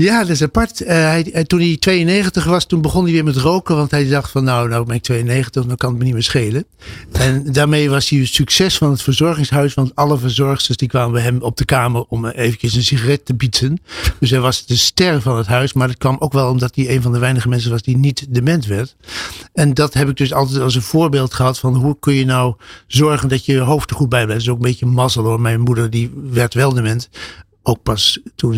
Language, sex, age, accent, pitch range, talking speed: Dutch, male, 60-79, Dutch, 120-145 Hz, 250 wpm